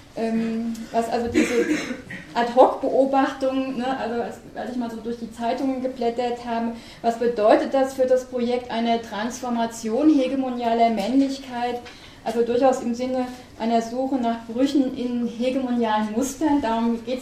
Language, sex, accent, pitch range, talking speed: German, female, German, 230-255 Hz, 130 wpm